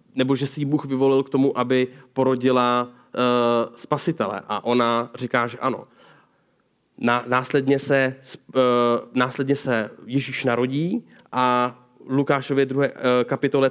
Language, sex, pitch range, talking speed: Czech, male, 120-140 Hz, 140 wpm